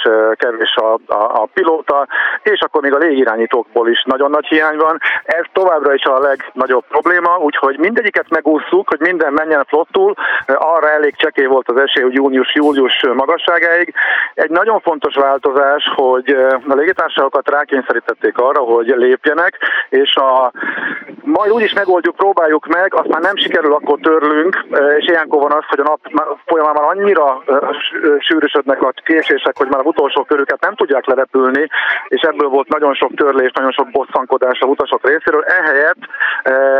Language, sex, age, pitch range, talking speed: Hungarian, male, 50-69, 135-180 Hz, 160 wpm